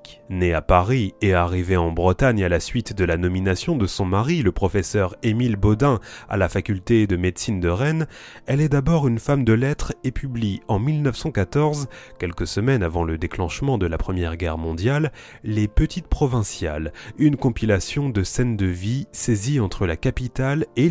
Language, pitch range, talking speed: French, 95-135 Hz, 180 wpm